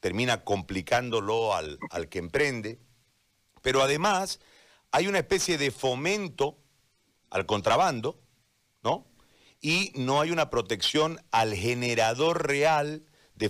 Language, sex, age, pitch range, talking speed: Spanish, male, 40-59, 115-150 Hz, 110 wpm